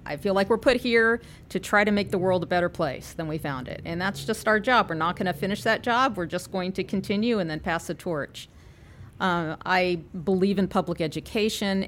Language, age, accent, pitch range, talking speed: English, 40-59, American, 165-200 Hz, 235 wpm